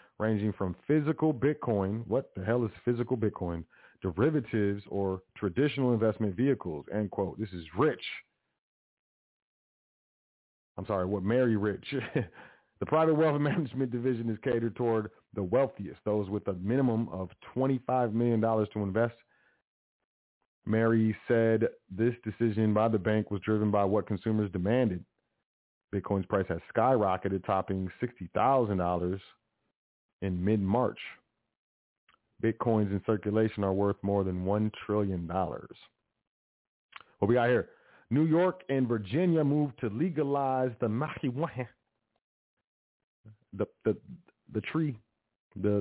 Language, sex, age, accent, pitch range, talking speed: English, male, 40-59, American, 100-130 Hz, 125 wpm